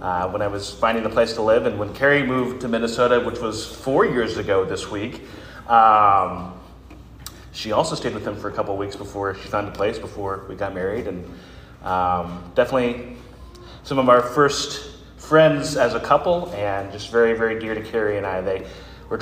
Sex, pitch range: male, 95-130 Hz